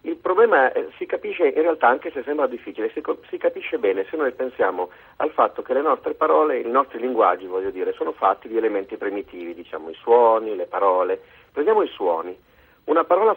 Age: 40-59